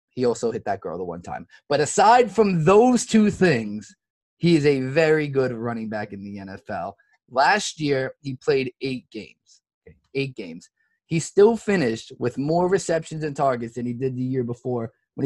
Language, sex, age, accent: English, male, 20-39, American